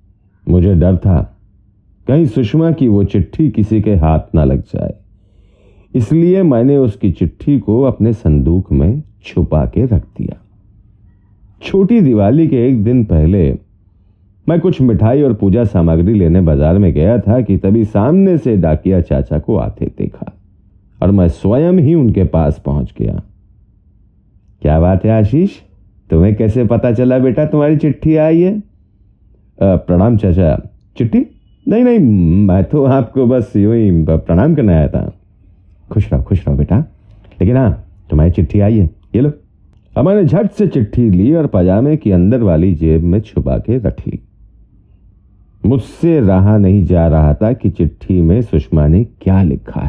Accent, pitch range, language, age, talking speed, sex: native, 90-125 Hz, Hindi, 40-59, 160 wpm, male